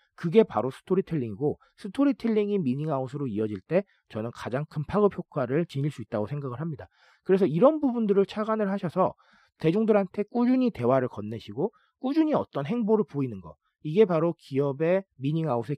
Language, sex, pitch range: Korean, male, 125-190 Hz